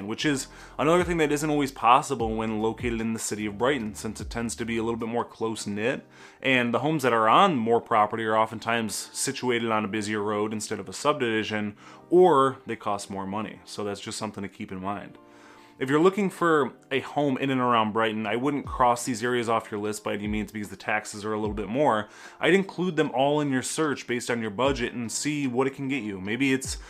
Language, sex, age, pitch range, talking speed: English, male, 20-39, 110-135 Hz, 235 wpm